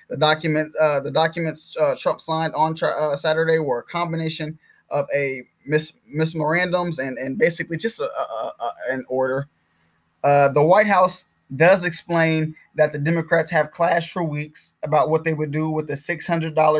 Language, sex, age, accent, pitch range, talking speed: English, male, 20-39, American, 145-165 Hz, 180 wpm